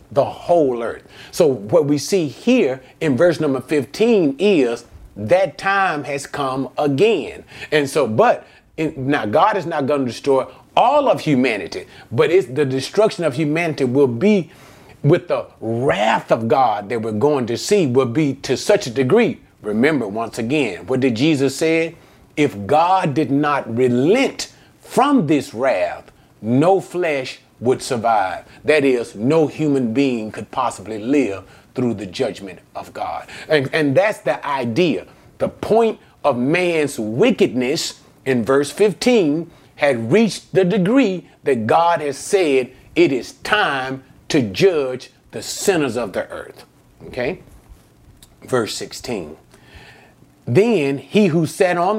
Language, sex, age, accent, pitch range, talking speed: English, male, 40-59, American, 130-175 Hz, 145 wpm